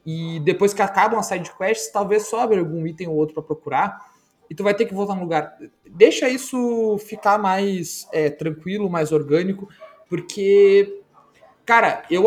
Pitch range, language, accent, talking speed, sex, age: 155-205 Hz, Portuguese, Brazilian, 165 wpm, male, 20-39